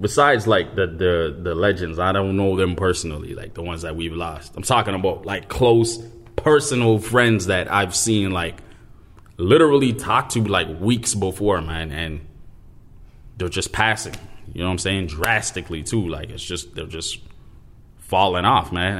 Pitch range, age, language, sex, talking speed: 85-110 Hz, 20-39, English, male, 170 wpm